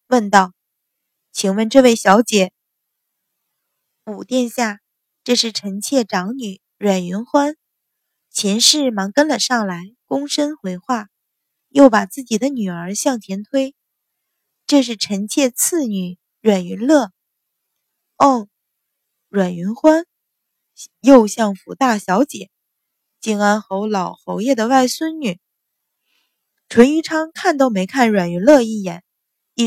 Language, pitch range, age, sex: Chinese, 200-275 Hz, 20-39, female